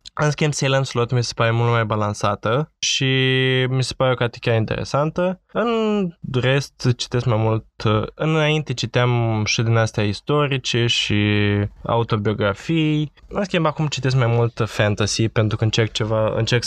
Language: Romanian